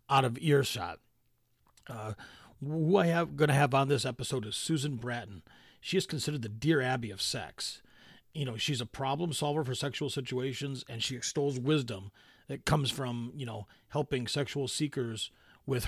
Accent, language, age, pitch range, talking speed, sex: American, English, 40-59, 120-145 Hz, 175 wpm, male